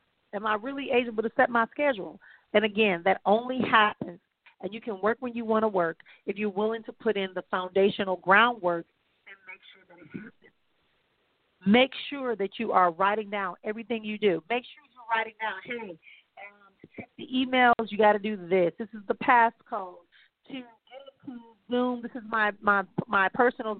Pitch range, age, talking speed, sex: 205-250 Hz, 40-59, 190 wpm, female